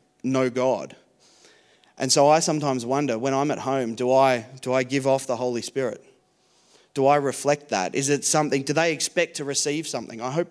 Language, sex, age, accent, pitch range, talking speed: English, male, 30-49, Australian, 120-150 Hz, 200 wpm